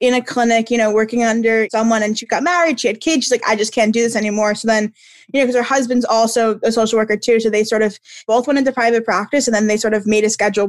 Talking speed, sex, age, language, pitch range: 290 wpm, female, 20-39, English, 215-245 Hz